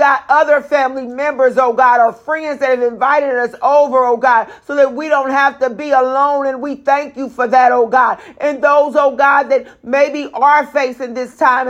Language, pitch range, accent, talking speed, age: English, 260-290 Hz, American, 210 wpm, 40-59